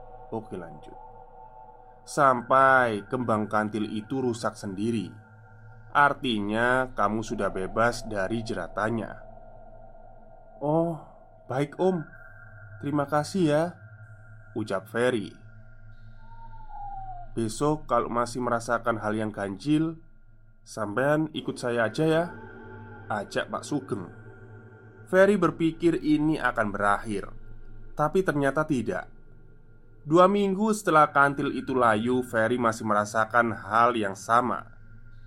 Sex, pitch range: male, 110-135 Hz